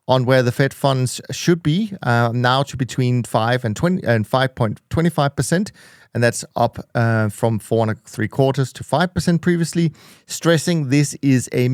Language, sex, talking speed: English, male, 165 wpm